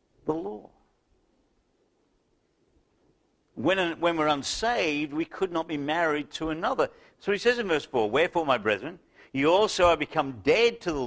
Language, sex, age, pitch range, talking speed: English, male, 60-79, 145-205 Hz, 155 wpm